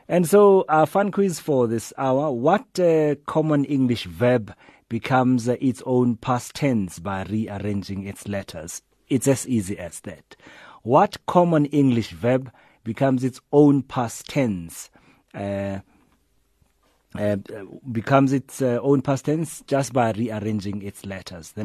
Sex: male